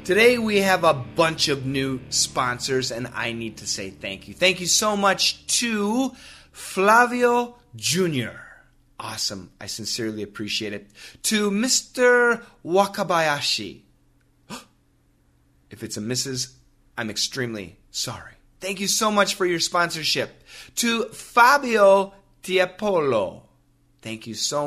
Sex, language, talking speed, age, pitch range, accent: male, English, 120 wpm, 30-49, 130-205 Hz, American